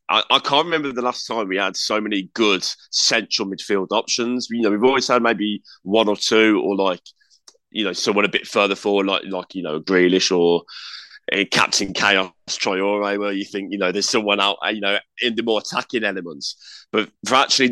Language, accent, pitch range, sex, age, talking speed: English, British, 95-120 Hz, male, 20-39, 205 wpm